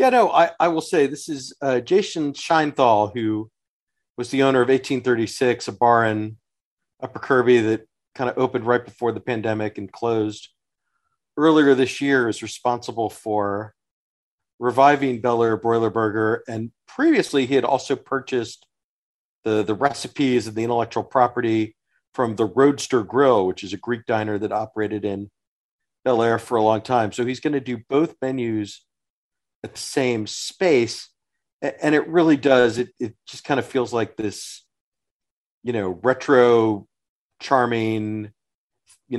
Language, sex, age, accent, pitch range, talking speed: English, male, 40-59, American, 110-135 Hz, 155 wpm